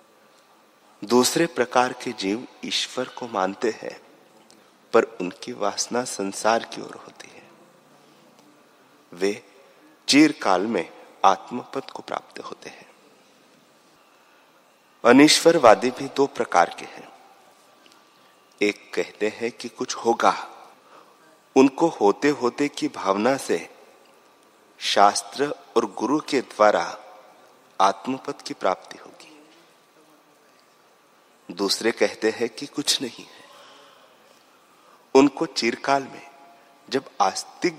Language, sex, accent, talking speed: Hindi, male, native, 100 wpm